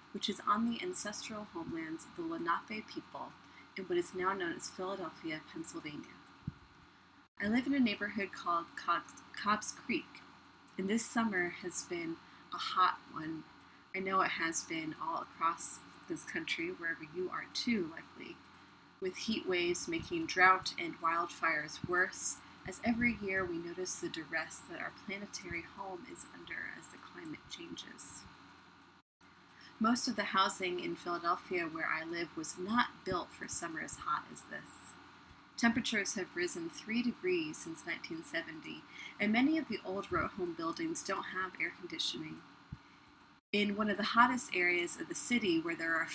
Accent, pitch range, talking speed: American, 175-275 Hz, 160 wpm